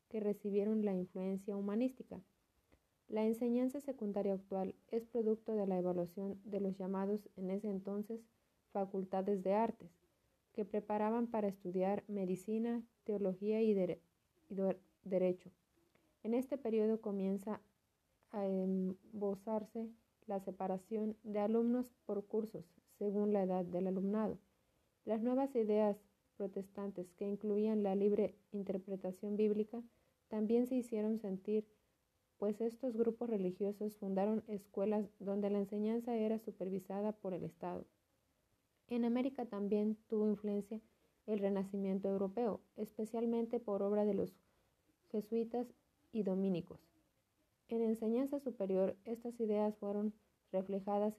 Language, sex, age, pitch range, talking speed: Spanish, female, 30-49, 195-220 Hz, 120 wpm